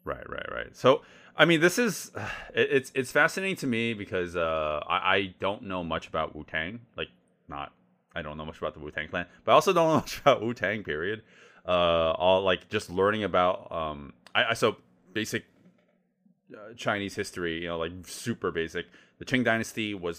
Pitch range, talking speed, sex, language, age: 80-120 Hz, 190 wpm, male, English, 30-49